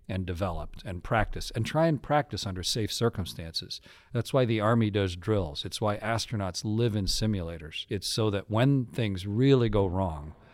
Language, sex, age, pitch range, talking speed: English, male, 40-59, 95-120 Hz, 175 wpm